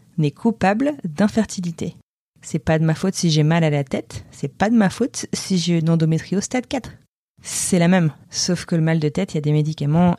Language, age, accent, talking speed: French, 20-39, French, 230 wpm